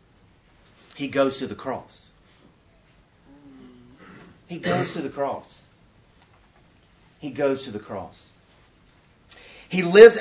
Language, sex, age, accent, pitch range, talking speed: English, male, 40-59, American, 130-180 Hz, 100 wpm